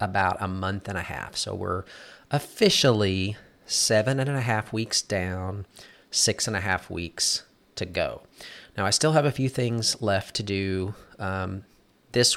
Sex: male